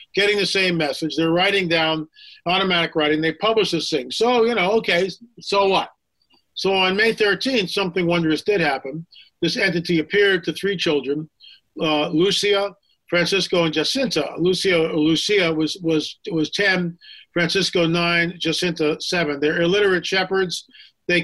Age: 50-69